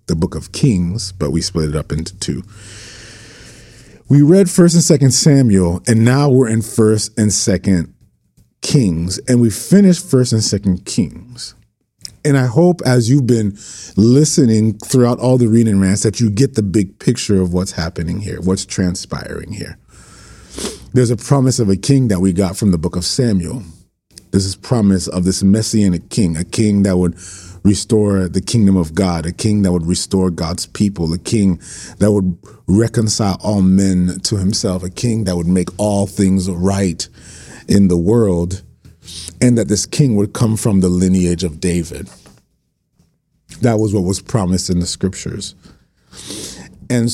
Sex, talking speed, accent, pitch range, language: male, 170 wpm, American, 90-115 Hz, English